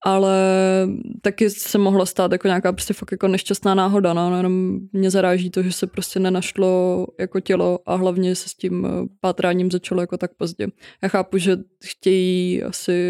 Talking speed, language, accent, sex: 175 wpm, Czech, native, female